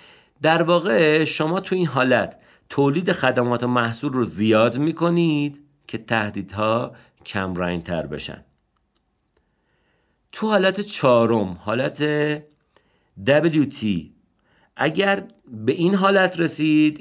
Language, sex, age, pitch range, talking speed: Persian, male, 50-69, 110-150 Hz, 100 wpm